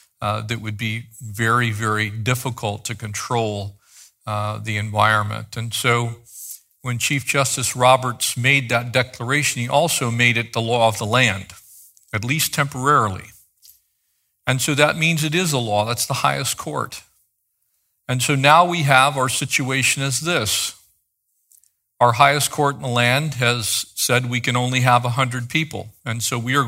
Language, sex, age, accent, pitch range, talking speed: English, male, 50-69, American, 115-135 Hz, 160 wpm